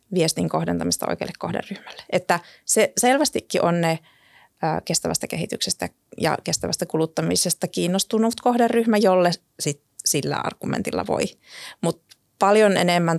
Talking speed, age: 105 wpm, 30-49